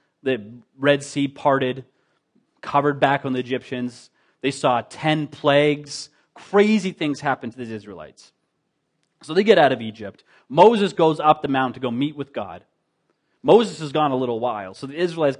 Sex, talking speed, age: male, 170 wpm, 30-49